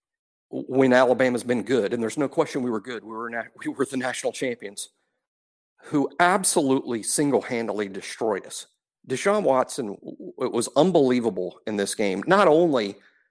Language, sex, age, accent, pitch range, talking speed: English, male, 50-69, American, 125-180 Hz, 155 wpm